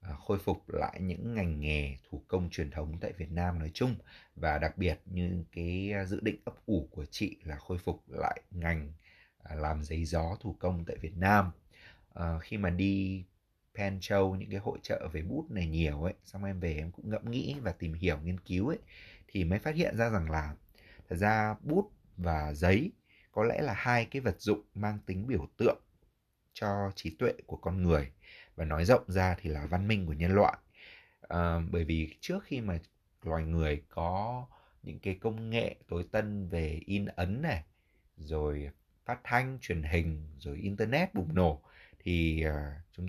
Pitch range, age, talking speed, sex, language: 80-105 Hz, 30-49, 190 wpm, male, Vietnamese